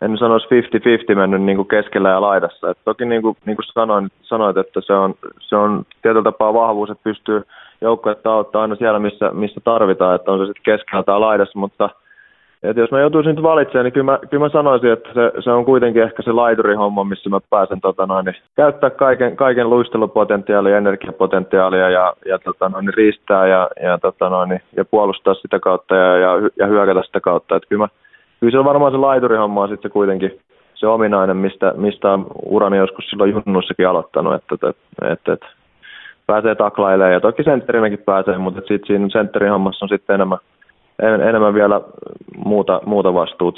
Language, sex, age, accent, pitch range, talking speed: Finnish, male, 20-39, native, 95-115 Hz, 185 wpm